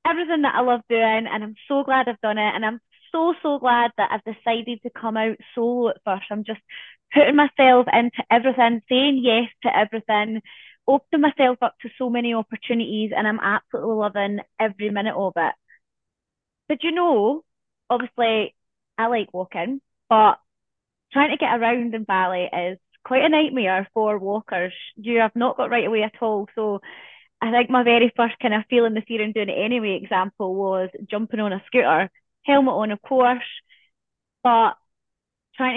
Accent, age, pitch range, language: British, 20-39, 210-255 Hz, English